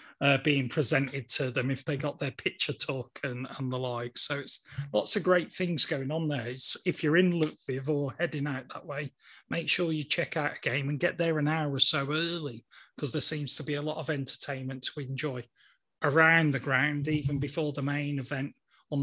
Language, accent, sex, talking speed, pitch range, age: English, British, male, 220 wpm, 135-160 Hz, 30-49